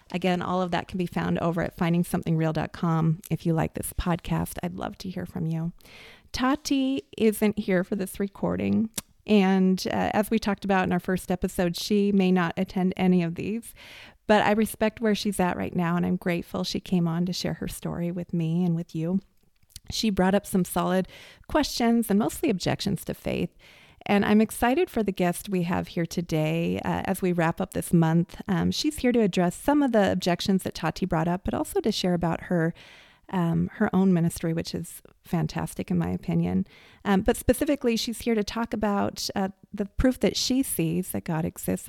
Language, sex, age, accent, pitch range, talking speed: English, female, 30-49, American, 175-210 Hz, 200 wpm